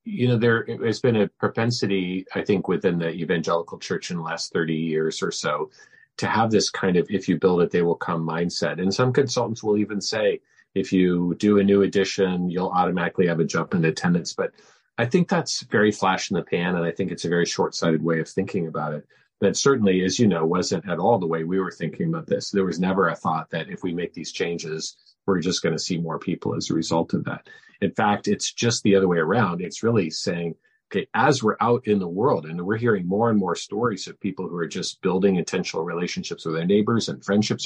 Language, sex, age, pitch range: English, male, 40-59, 85-115 Hz